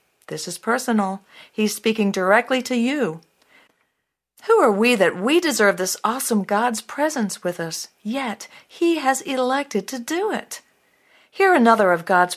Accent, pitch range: American, 180-235 Hz